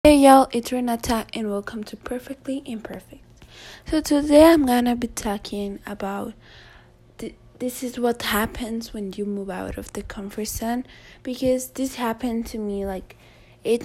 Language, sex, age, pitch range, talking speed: English, female, 20-39, 205-255 Hz, 155 wpm